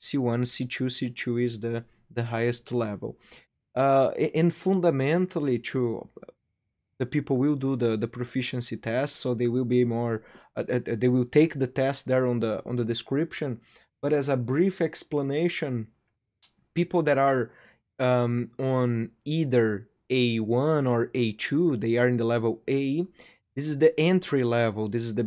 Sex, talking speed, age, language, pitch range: male, 155 wpm, 20-39, English, 115-135 Hz